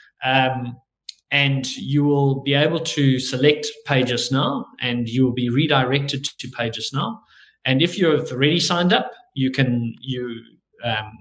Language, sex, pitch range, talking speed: English, male, 125-155 Hz, 145 wpm